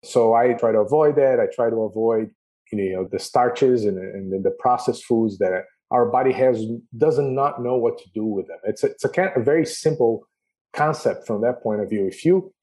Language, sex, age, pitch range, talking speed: English, male, 40-59, 110-150 Hz, 230 wpm